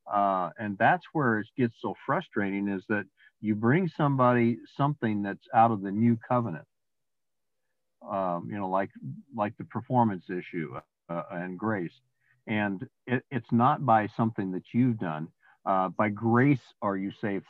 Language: English